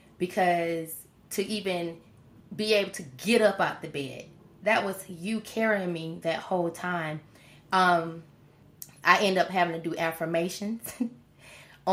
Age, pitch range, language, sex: 20-39, 170-200 Hz, English, female